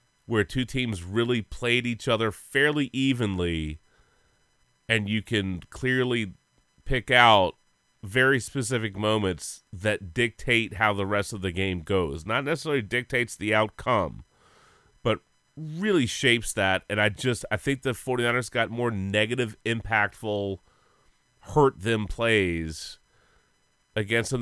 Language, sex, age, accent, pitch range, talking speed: English, male, 30-49, American, 100-125 Hz, 130 wpm